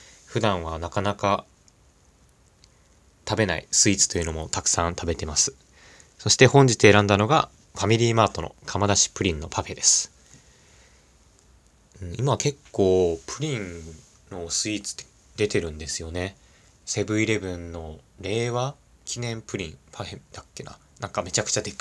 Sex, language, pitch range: male, Japanese, 80-110 Hz